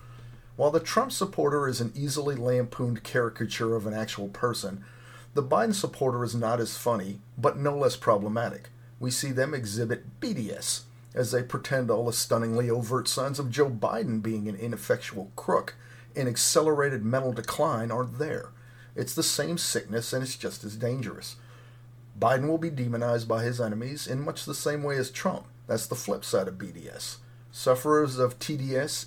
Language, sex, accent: English, male, American